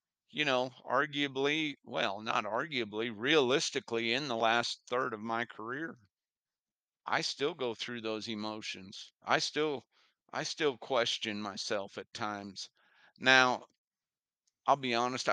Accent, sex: American, male